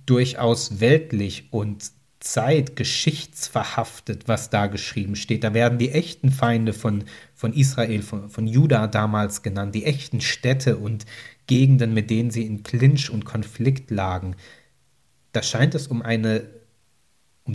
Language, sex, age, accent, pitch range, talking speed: German, male, 30-49, German, 110-135 Hz, 135 wpm